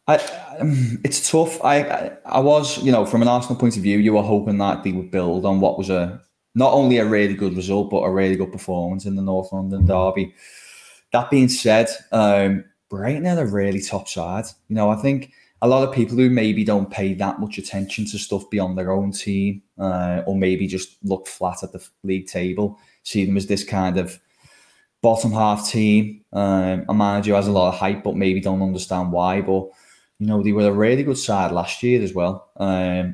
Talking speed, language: 220 wpm, English